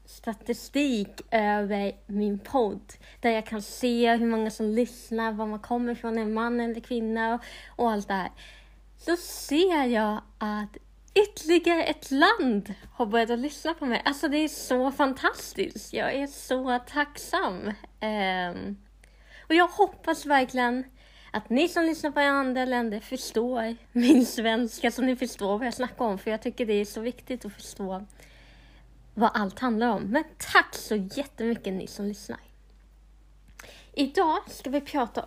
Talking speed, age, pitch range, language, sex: 155 wpm, 30-49, 215-275 Hz, Swedish, female